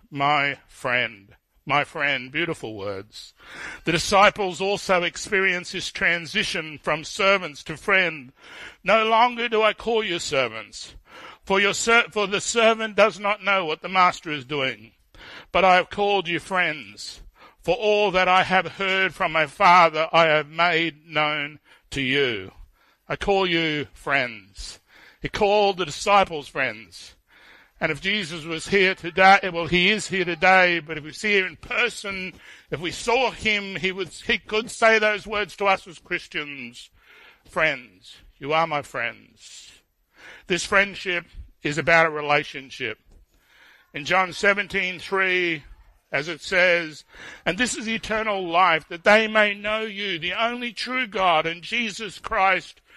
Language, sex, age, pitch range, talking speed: English, male, 60-79, 150-200 Hz, 150 wpm